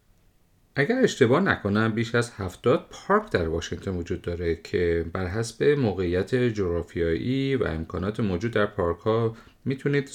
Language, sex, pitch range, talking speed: Persian, male, 90-120 Hz, 130 wpm